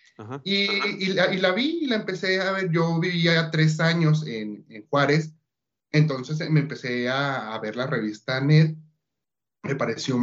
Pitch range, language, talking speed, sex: 120-165 Hz, Spanish, 175 wpm, male